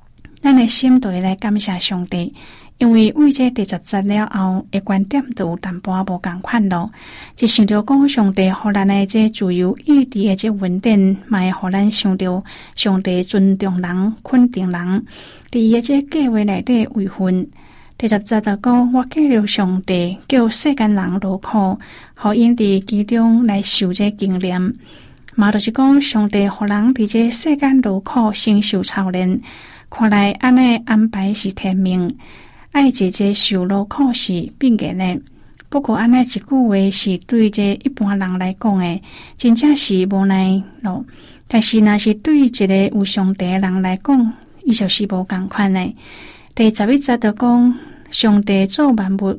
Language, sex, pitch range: Chinese, female, 190-235 Hz